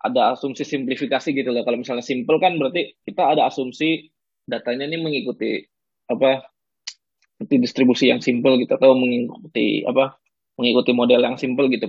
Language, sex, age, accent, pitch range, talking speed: Indonesian, male, 20-39, native, 125-150 Hz, 150 wpm